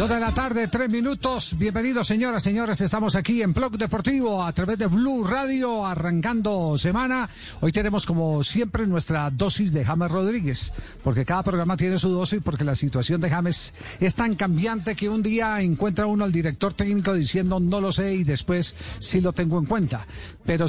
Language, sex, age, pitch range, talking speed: Spanish, male, 50-69, 155-205 Hz, 185 wpm